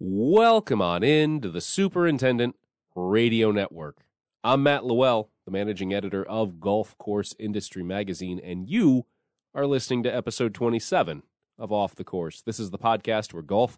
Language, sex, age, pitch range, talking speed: English, male, 30-49, 100-140 Hz, 155 wpm